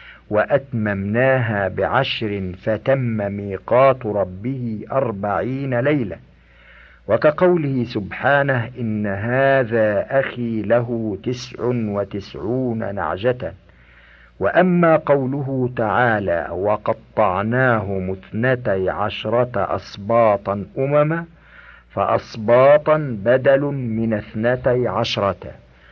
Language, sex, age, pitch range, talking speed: Arabic, male, 50-69, 100-130 Hz, 65 wpm